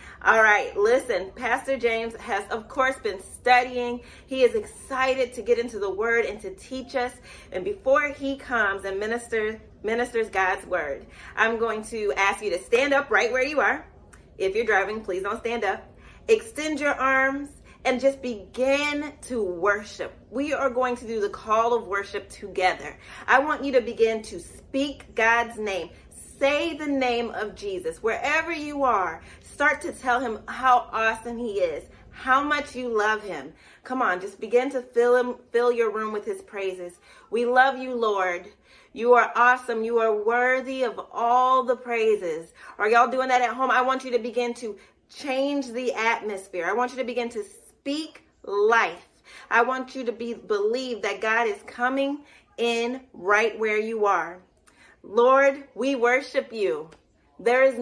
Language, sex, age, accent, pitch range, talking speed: English, female, 30-49, American, 220-265 Hz, 175 wpm